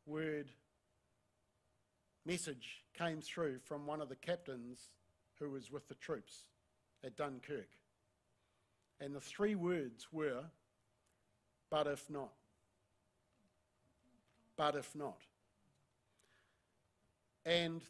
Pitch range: 125-175 Hz